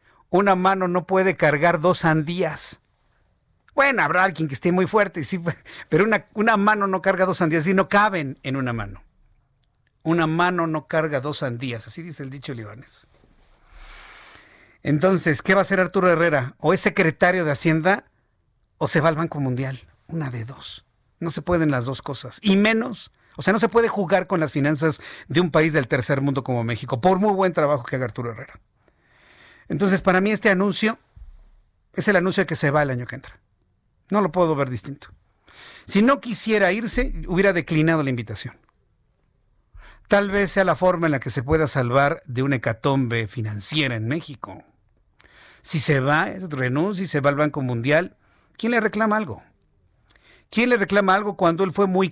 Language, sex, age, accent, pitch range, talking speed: Spanish, male, 50-69, Mexican, 130-190 Hz, 185 wpm